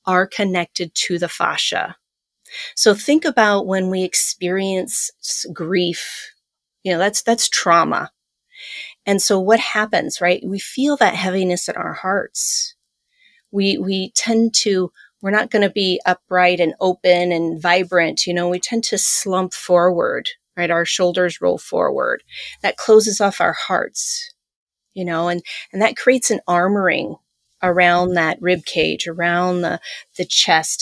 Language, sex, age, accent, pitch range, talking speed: English, female, 30-49, American, 175-230 Hz, 150 wpm